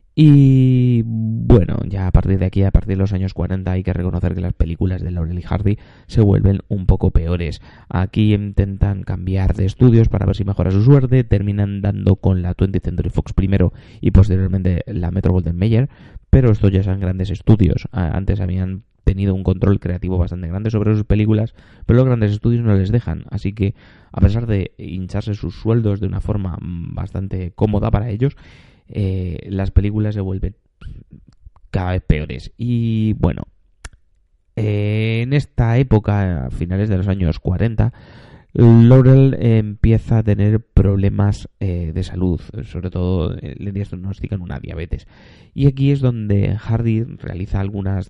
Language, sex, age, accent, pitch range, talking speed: Spanish, male, 20-39, Spanish, 90-110 Hz, 165 wpm